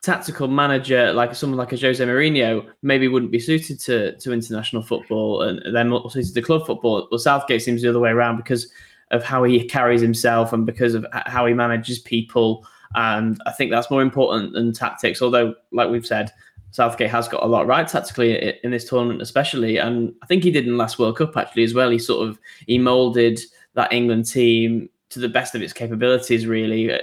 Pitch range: 115-130 Hz